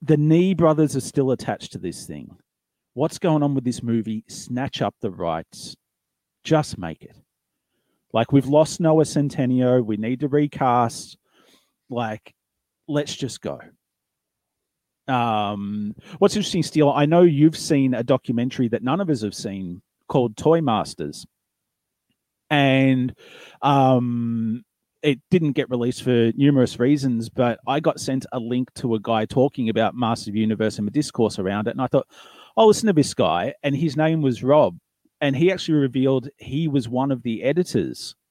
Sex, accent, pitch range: male, Australian, 110-145 Hz